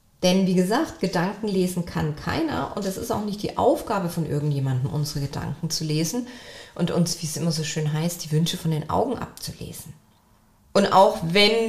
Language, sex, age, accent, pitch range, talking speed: German, female, 30-49, German, 155-205 Hz, 190 wpm